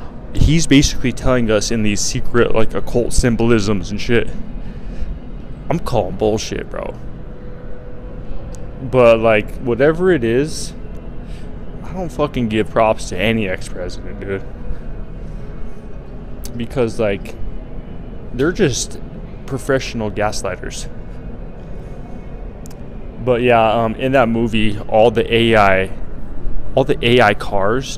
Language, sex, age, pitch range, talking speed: English, male, 20-39, 100-120 Hz, 105 wpm